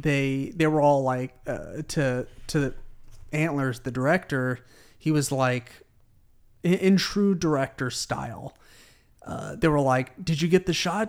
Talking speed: 155 wpm